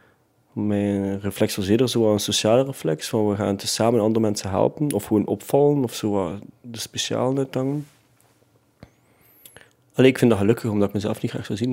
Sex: male